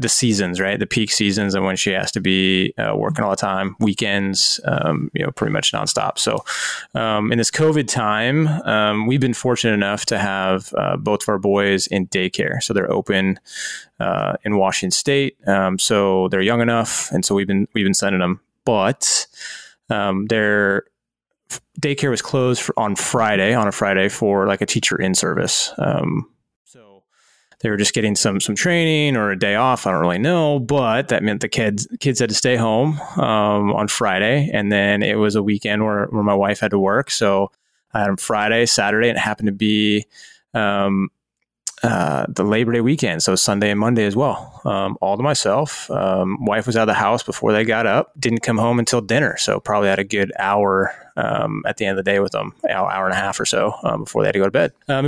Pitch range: 100-130 Hz